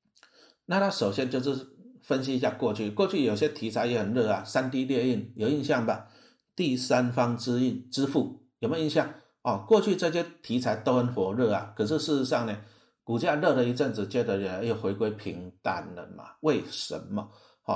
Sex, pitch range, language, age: male, 115-155 Hz, Chinese, 50-69